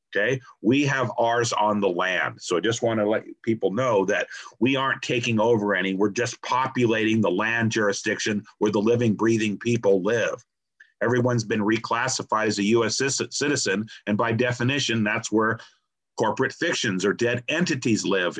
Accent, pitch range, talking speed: American, 110-130 Hz, 165 wpm